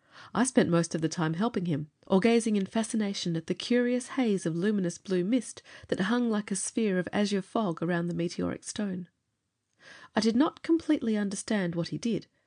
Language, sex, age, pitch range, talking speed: English, female, 30-49, 175-225 Hz, 190 wpm